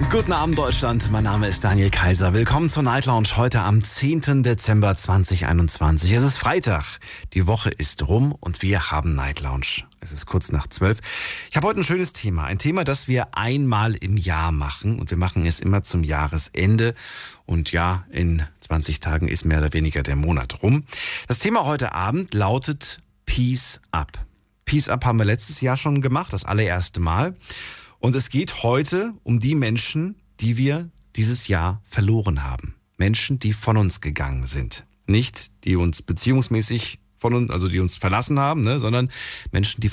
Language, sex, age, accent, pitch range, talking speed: German, male, 40-59, German, 90-125 Hz, 180 wpm